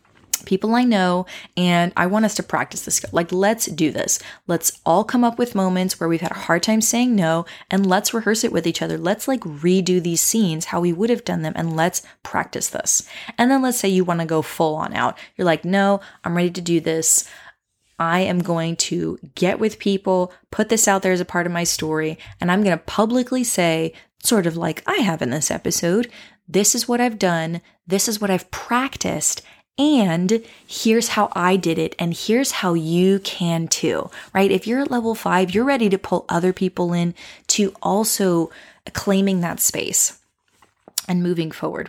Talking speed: 205 wpm